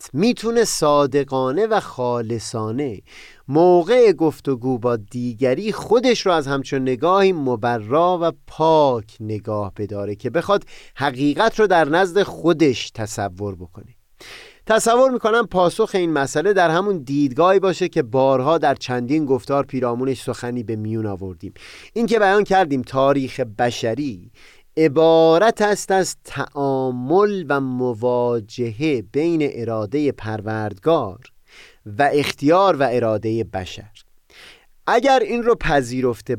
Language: Persian